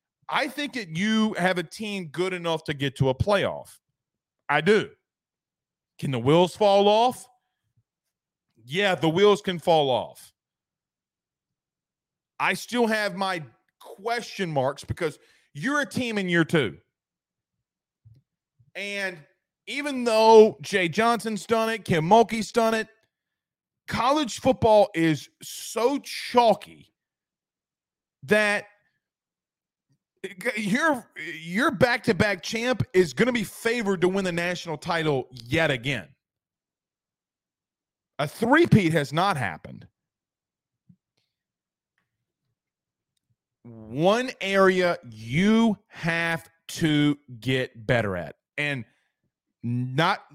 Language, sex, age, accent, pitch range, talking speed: English, male, 40-59, American, 145-215 Hz, 105 wpm